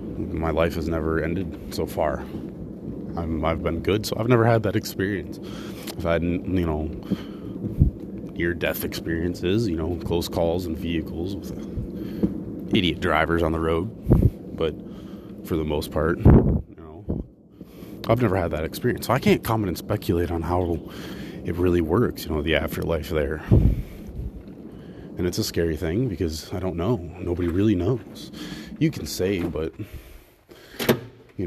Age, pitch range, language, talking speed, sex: 30-49, 80-95 Hz, English, 150 wpm, male